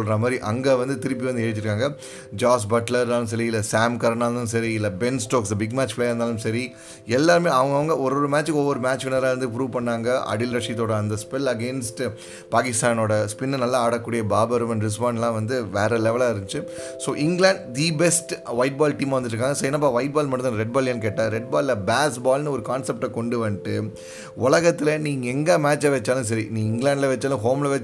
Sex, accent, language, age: male, native, Tamil, 30-49